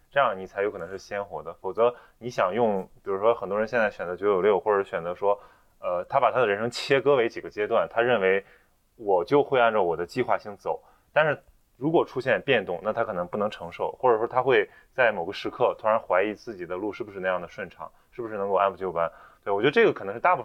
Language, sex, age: Chinese, male, 20-39